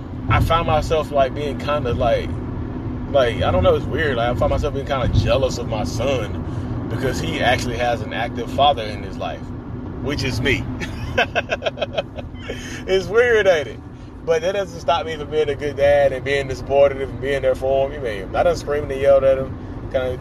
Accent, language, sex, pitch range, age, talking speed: American, English, male, 110-140 Hz, 20-39, 210 wpm